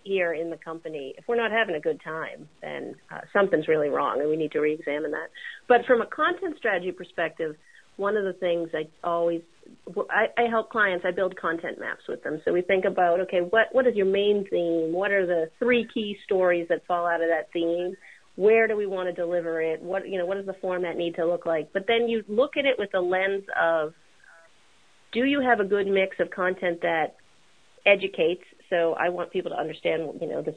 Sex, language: female, English